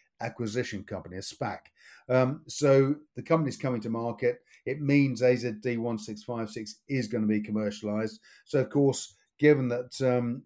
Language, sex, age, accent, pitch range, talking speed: English, male, 50-69, British, 110-125 Hz, 165 wpm